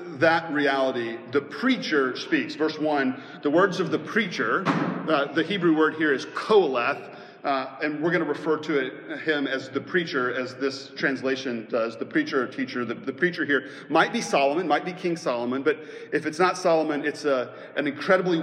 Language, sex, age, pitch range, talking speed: English, male, 40-59, 140-170 Hz, 190 wpm